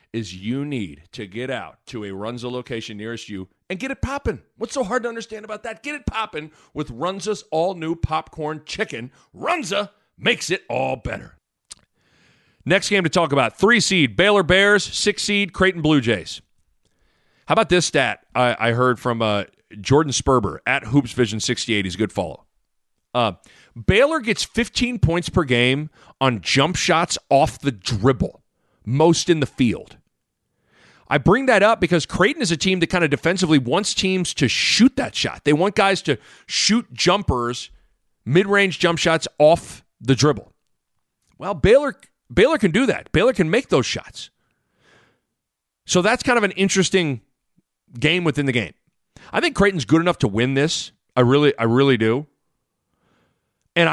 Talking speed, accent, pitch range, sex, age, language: 165 wpm, American, 125-190 Hz, male, 40-59, English